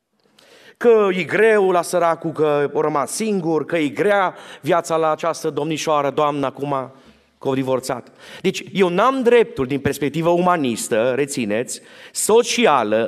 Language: Romanian